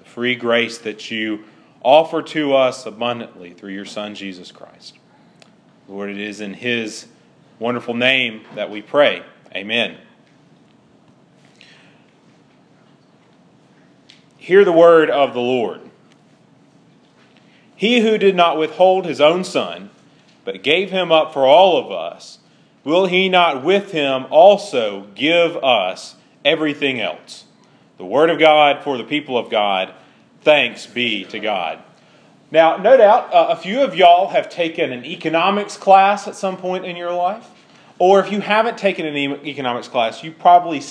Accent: American